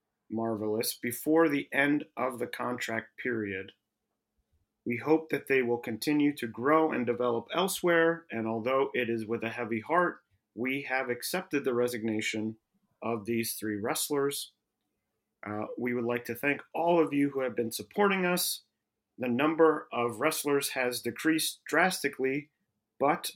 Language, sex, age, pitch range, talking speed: English, male, 40-59, 120-150 Hz, 150 wpm